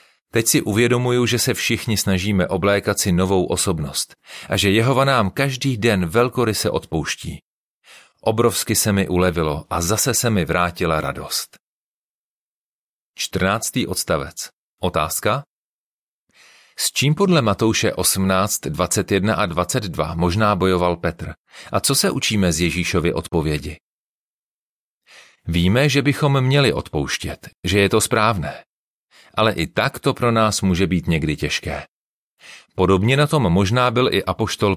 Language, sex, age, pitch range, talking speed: Czech, male, 40-59, 85-115 Hz, 135 wpm